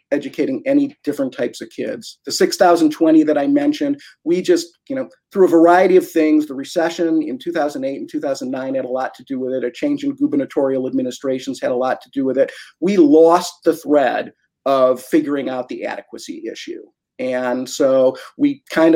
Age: 50-69